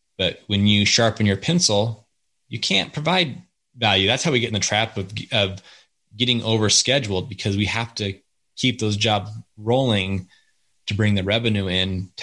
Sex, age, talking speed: male, 20-39, 170 wpm